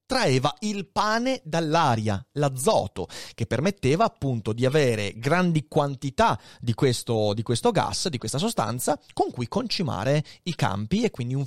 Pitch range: 115-175 Hz